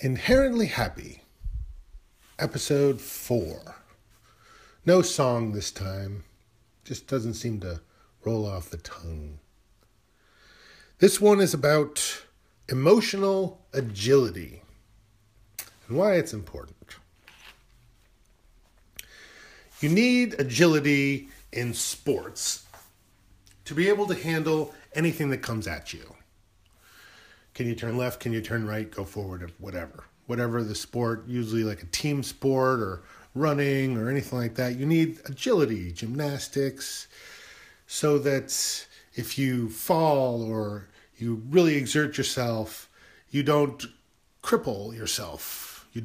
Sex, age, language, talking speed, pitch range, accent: male, 40-59, English, 110 wpm, 105-145 Hz, American